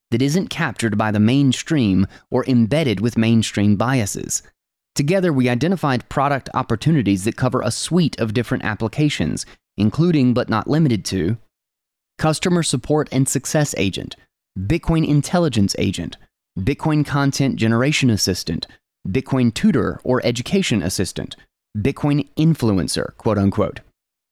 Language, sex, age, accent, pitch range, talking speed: English, male, 20-39, American, 110-145 Hz, 120 wpm